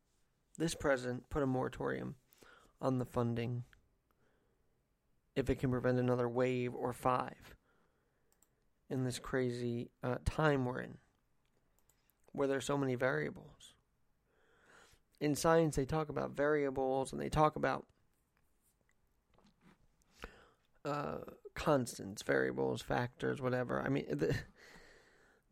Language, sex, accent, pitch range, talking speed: English, male, American, 130-185 Hz, 110 wpm